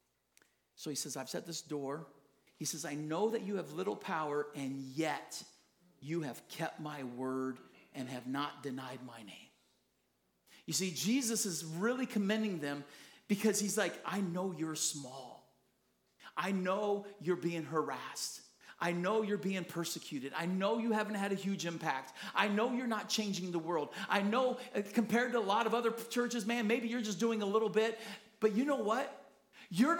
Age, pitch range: 50-69, 145-235 Hz